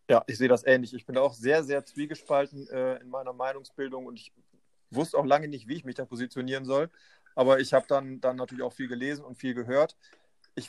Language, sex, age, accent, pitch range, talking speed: German, male, 30-49, German, 125-145 Hz, 225 wpm